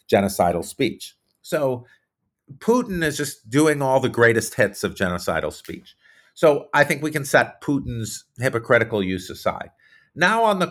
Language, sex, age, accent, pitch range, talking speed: English, male, 50-69, American, 105-140 Hz, 150 wpm